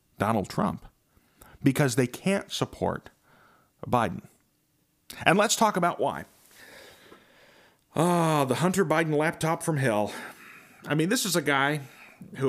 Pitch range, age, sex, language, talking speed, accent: 115-160 Hz, 40-59, male, English, 130 wpm, American